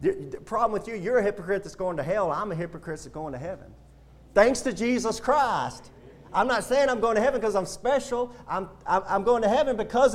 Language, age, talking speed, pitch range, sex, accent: English, 40-59, 225 wpm, 140-225 Hz, male, American